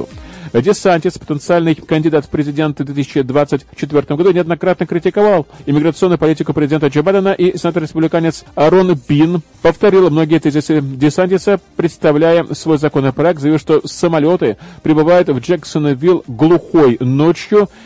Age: 40-59